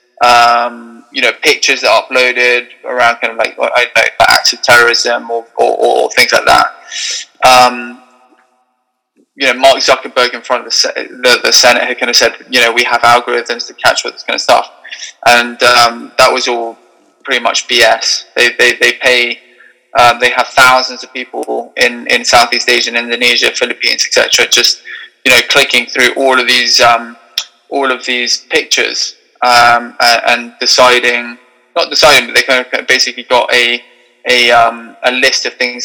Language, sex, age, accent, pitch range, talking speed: English, male, 20-39, British, 120-130 Hz, 180 wpm